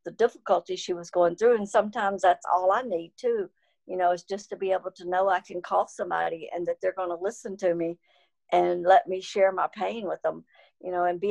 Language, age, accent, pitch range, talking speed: English, 60-79, American, 175-210 Hz, 245 wpm